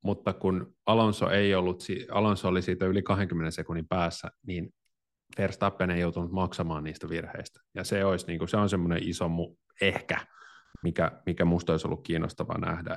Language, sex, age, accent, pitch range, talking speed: Finnish, male, 30-49, native, 85-105 Hz, 160 wpm